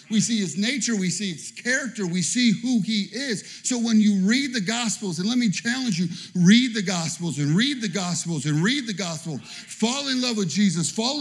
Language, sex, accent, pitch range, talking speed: English, male, American, 185-230 Hz, 220 wpm